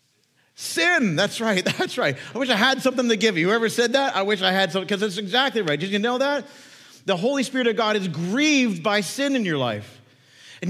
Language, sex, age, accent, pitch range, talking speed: English, male, 40-59, American, 180-240 Hz, 235 wpm